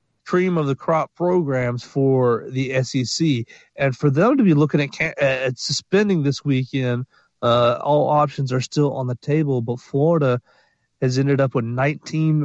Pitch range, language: 130-165 Hz, English